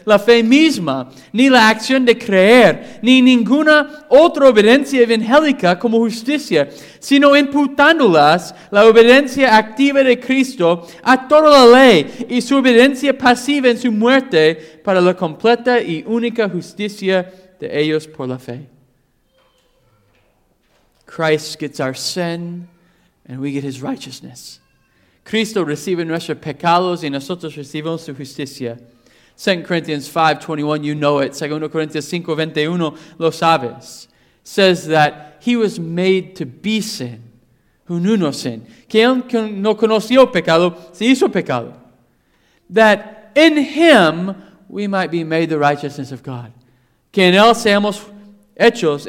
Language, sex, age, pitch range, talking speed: English, male, 40-59, 150-230 Hz, 135 wpm